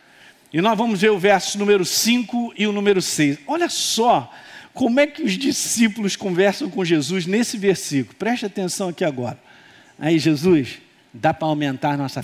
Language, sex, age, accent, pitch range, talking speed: Portuguese, male, 50-69, Brazilian, 170-240 Hz, 170 wpm